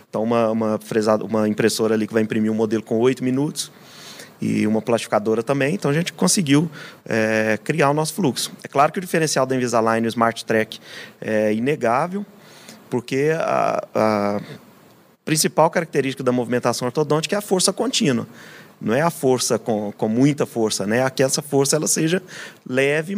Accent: Brazilian